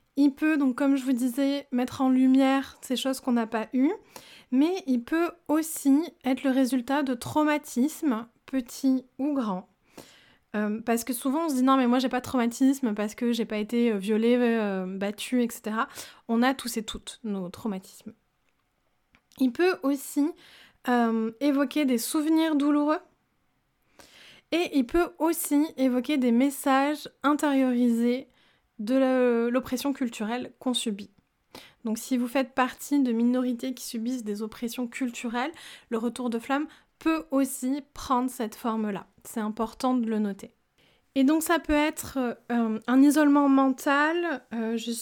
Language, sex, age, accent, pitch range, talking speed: French, female, 20-39, French, 230-285 Hz, 155 wpm